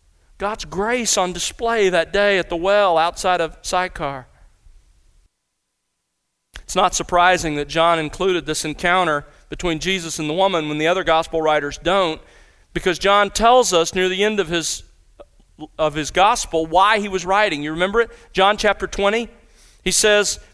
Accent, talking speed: American, 160 wpm